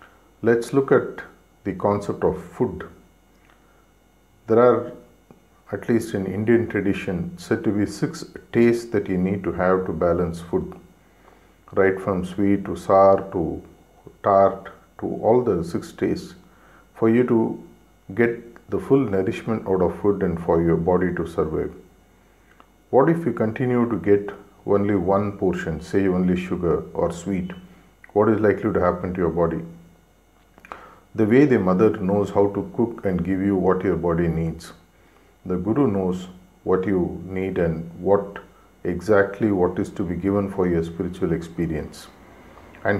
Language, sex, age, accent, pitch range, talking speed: English, male, 50-69, Indian, 90-105 Hz, 155 wpm